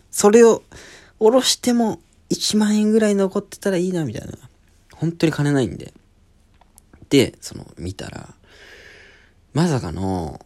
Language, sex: Japanese, male